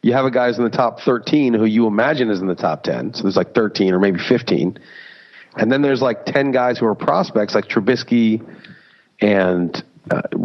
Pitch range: 100-120 Hz